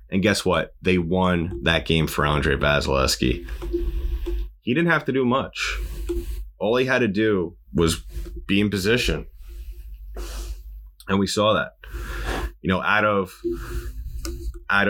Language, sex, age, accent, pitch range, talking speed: English, male, 30-49, American, 70-95 Hz, 135 wpm